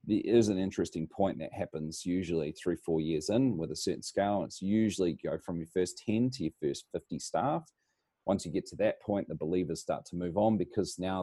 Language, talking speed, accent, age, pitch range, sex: English, 225 wpm, Australian, 30-49, 85-110 Hz, male